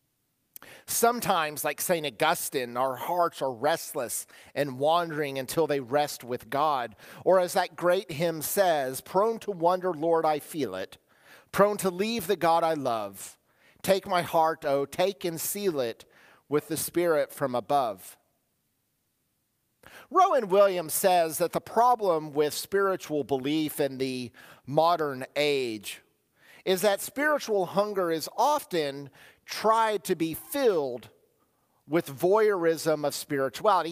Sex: male